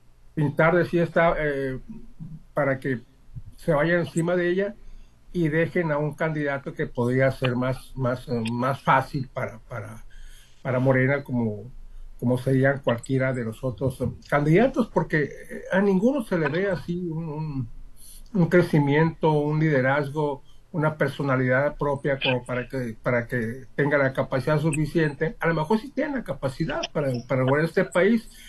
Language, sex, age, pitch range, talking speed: Spanish, male, 60-79, 125-160 Hz, 155 wpm